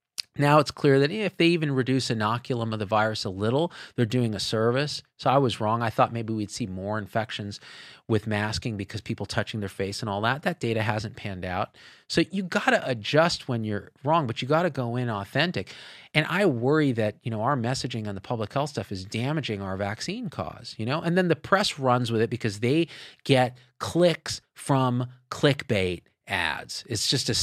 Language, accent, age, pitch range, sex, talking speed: English, American, 40-59, 110-145 Hz, male, 205 wpm